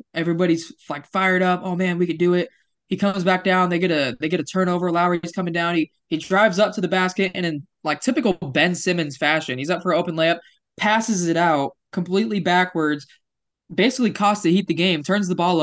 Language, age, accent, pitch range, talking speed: English, 20-39, American, 145-180 Hz, 225 wpm